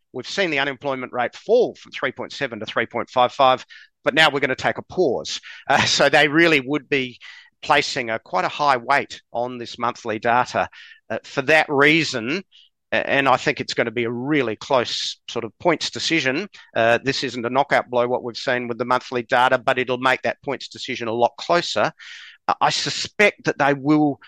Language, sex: English, male